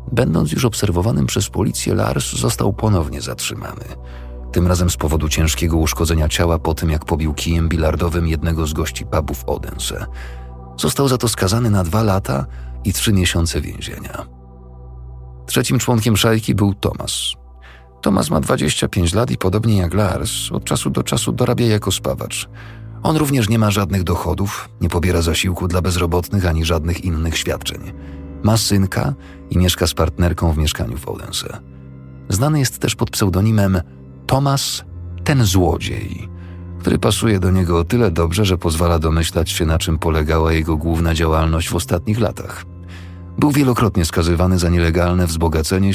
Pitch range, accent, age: 80-100 Hz, native, 40-59